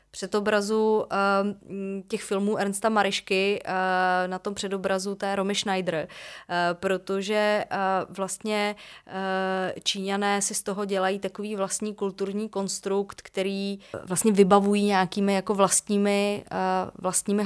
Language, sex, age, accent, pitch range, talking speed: Czech, female, 30-49, native, 180-205 Hz, 125 wpm